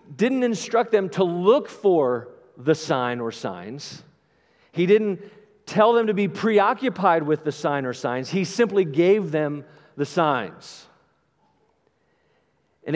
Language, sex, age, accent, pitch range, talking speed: English, male, 50-69, American, 180-220 Hz, 135 wpm